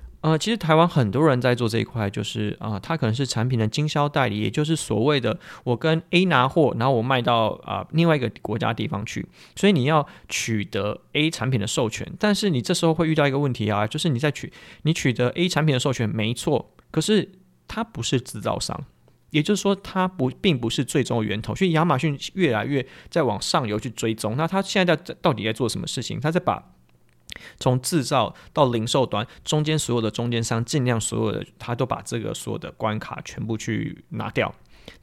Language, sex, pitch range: Chinese, male, 115-155 Hz